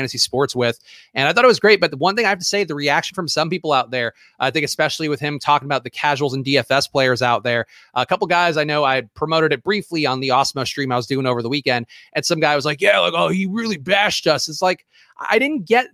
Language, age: English, 30-49